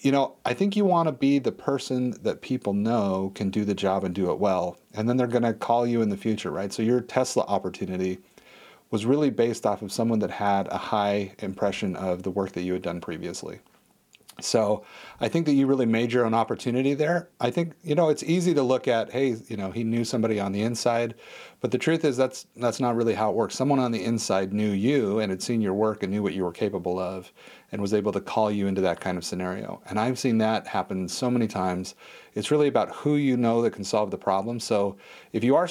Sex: male